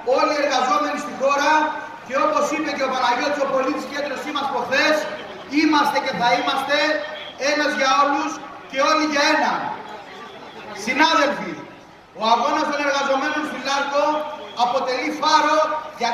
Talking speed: 135 wpm